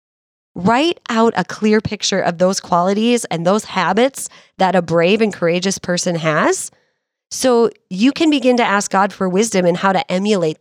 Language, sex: English, female